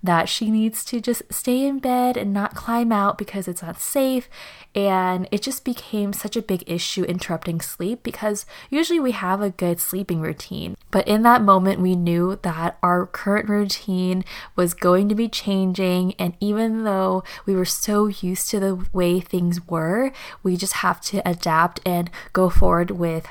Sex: female